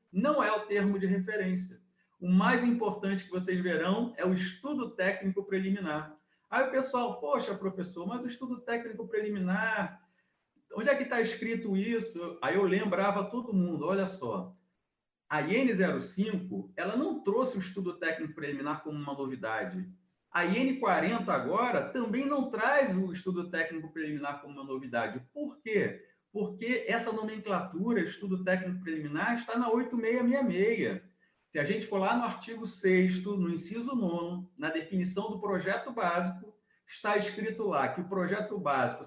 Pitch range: 175-220 Hz